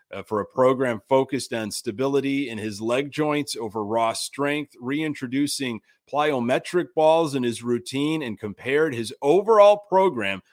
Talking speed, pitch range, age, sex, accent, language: 140 wpm, 120-165 Hz, 30-49, male, American, English